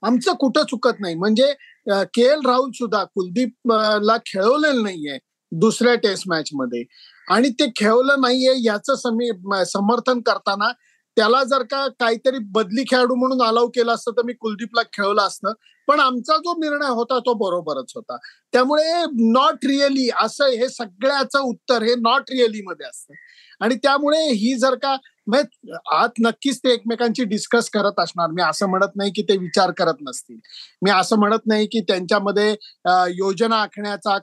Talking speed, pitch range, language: 155 wpm, 205-260 Hz, Marathi